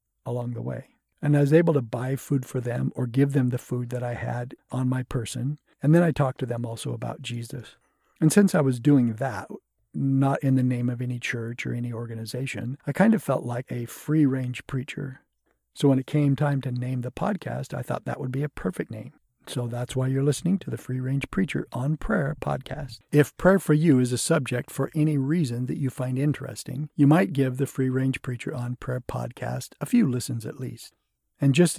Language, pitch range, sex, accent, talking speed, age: English, 125-145 Hz, male, American, 220 wpm, 50-69